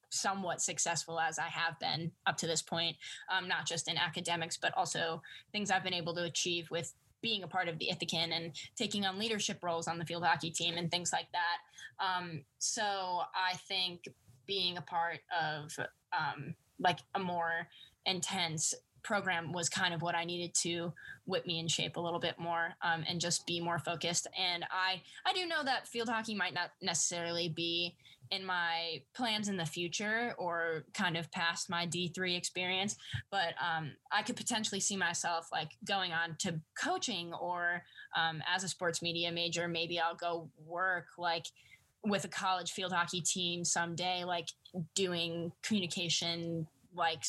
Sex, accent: female, American